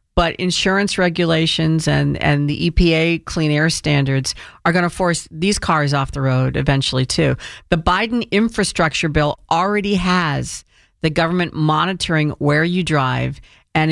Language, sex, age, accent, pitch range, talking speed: English, female, 50-69, American, 150-185 Hz, 145 wpm